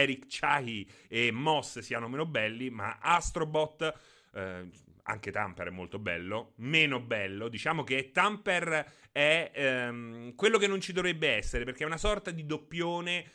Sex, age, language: male, 30-49, Italian